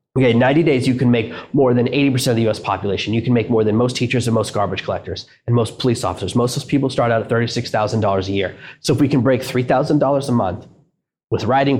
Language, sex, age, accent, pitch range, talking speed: English, male, 30-49, American, 115-140 Hz, 245 wpm